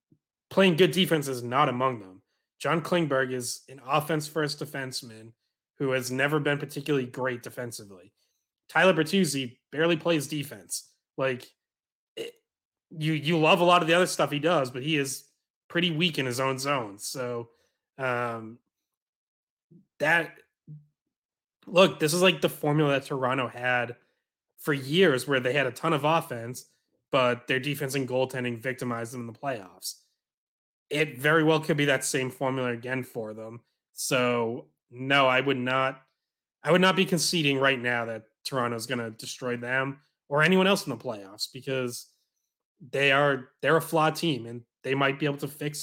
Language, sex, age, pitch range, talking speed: English, male, 20-39, 125-155 Hz, 170 wpm